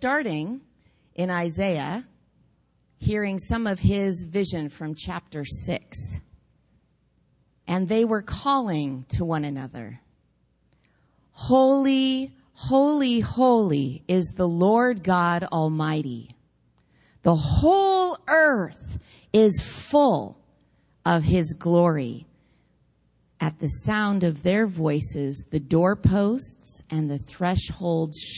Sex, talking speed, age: female, 95 wpm, 40-59